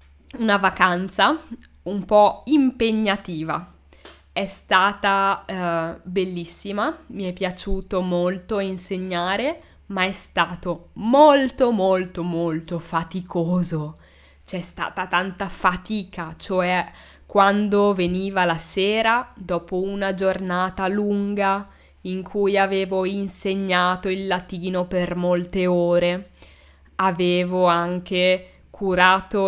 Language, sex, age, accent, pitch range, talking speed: Italian, female, 10-29, native, 175-200 Hz, 95 wpm